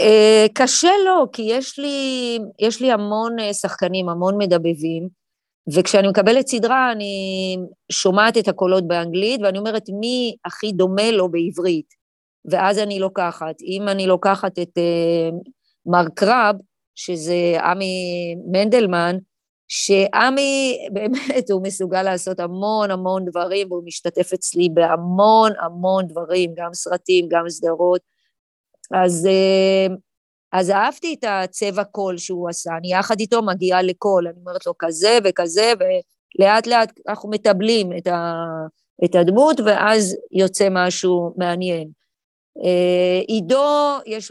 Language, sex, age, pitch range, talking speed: Hebrew, female, 30-49, 175-215 Hz, 120 wpm